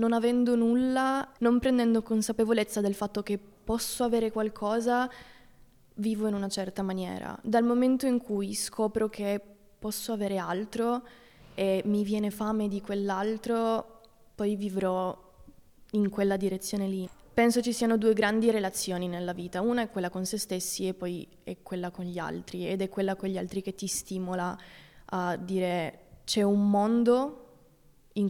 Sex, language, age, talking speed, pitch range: female, Italian, 20-39, 155 wpm, 195-230 Hz